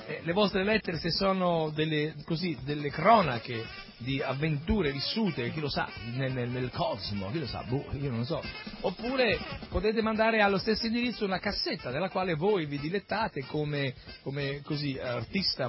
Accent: native